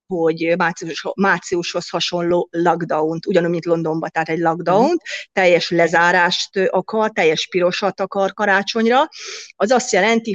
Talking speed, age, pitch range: 120 wpm, 30-49, 170-205 Hz